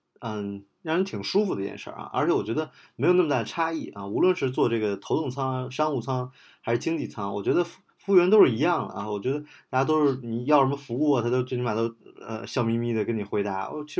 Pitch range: 110-145 Hz